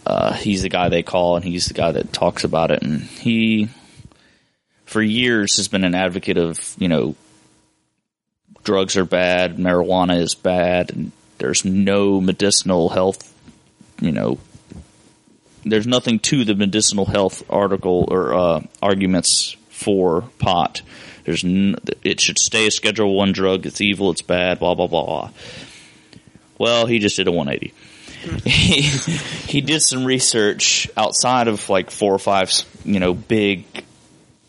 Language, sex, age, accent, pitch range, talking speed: English, male, 30-49, American, 90-105 Hz, 150 wpm